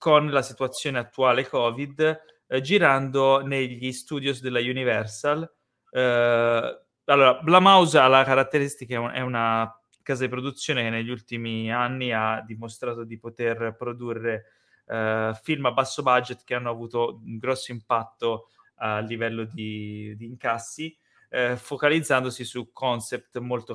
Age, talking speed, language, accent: 20-39, 135 wpm, Italian, native